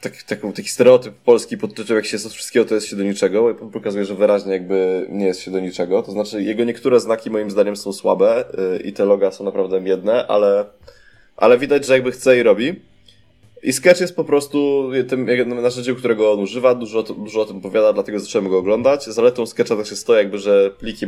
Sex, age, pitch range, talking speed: male, 20-39, 110-160 Hz, 220 wpm